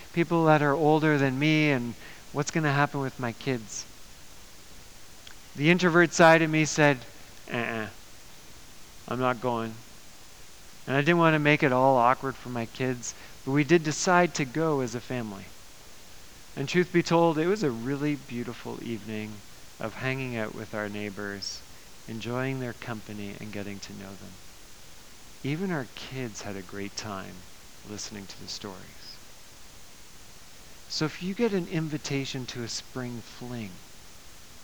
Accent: American